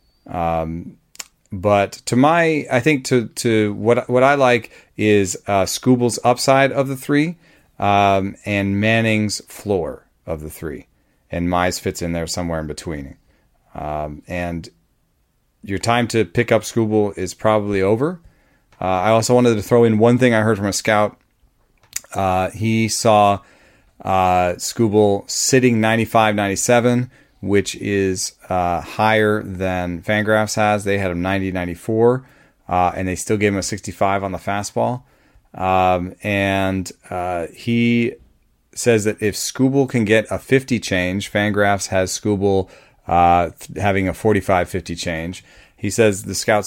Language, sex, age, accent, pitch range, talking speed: English, male, 30-49, American, 90-115 Hz, 145 wpm